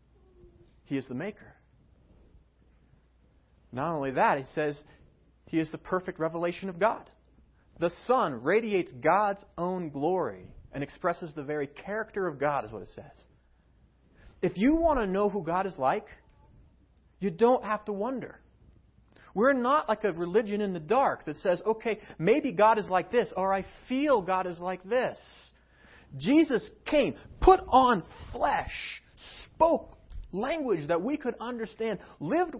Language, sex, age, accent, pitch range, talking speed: English, male, 40-59, American, 155-230 Hz, 150 wpm